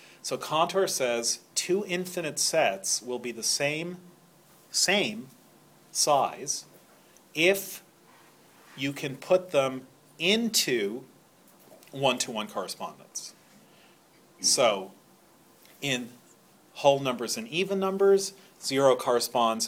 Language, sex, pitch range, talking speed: English, male, 120-185 Hz, 90 wpm